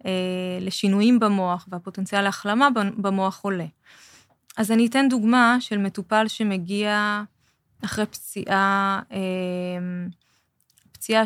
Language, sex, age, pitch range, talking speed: Hebrew, female, 20-39, 185-220 Hz, 95 wpm